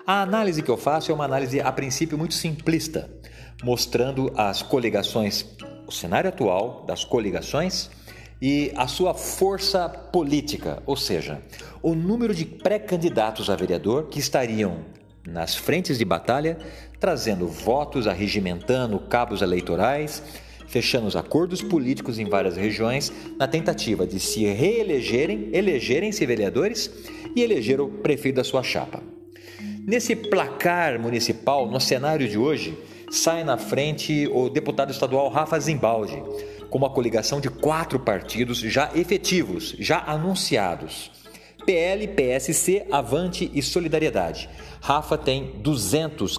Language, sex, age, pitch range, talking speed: Portuguese, male, 50-69, 110-165 Hz, 125 wpm